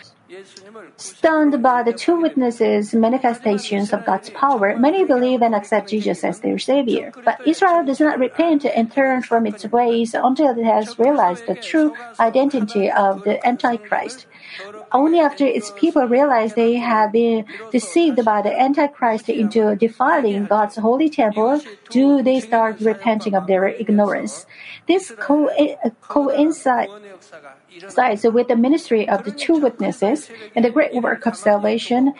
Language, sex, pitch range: Korean, female, 215-275 Hz